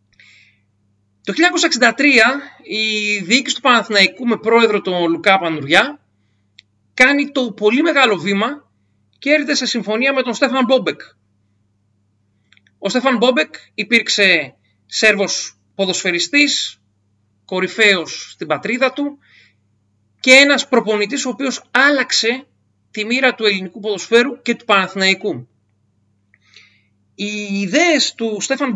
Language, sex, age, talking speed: Greek, male, 40-59, 110 wpm